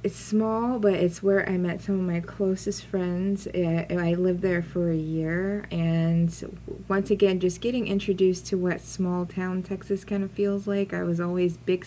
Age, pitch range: 20-39, 160-185 Hz